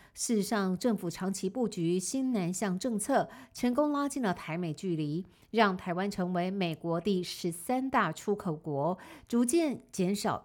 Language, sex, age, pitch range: Chinese, female, 50-69, 170-220 Hz